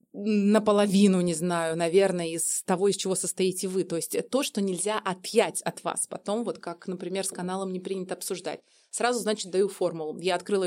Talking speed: 185 wpm